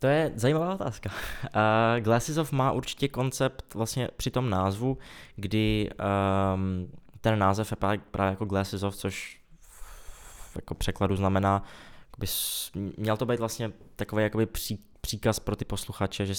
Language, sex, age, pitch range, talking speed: Czech, male, 20-39, 100-110 Hz, 145 wpm